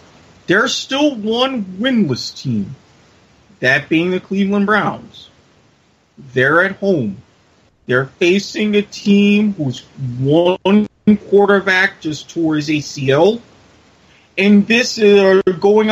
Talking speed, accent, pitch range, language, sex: 105 wpm, American, 160-200 Hz, English, male